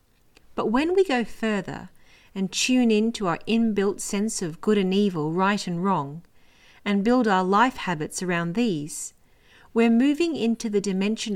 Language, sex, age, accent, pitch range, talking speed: English, female, 40-59, Australian, 175-235 Hz, 165 wpm